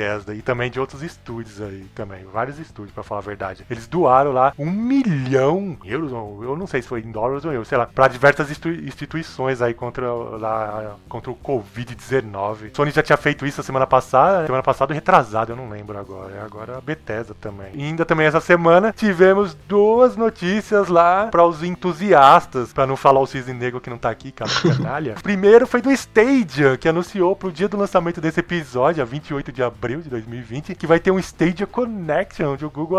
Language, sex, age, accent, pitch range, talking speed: Portuguese, male, 20-39, Brazilian, 130-180 Hz, 205 wpm